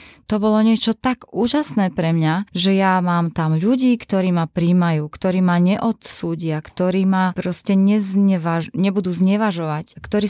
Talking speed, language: 145 wpm, Slovak